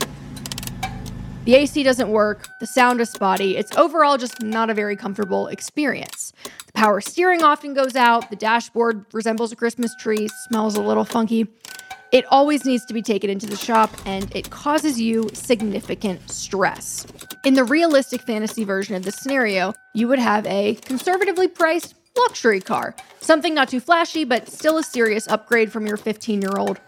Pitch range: 215-285 Hz